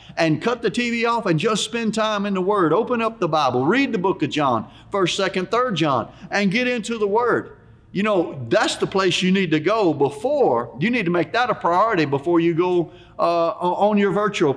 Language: English